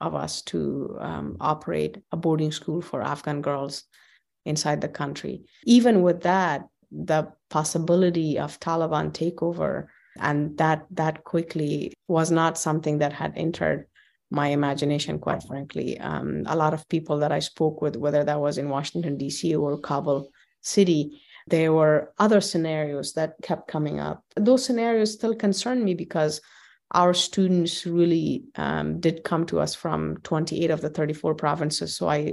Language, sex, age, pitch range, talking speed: English, female, 30-49, 150-175 Hz, 155 wpm